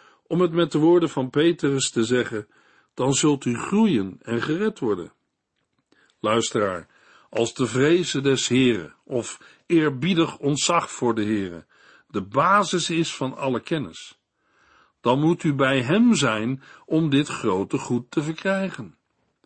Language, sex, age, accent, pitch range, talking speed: Dutch, male, 60-79, Dutch, 130-175 Hz, 140 wpm